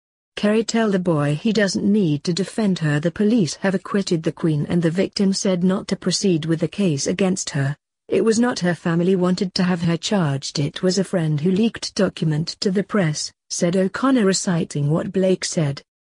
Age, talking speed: 40-59, 200 wpm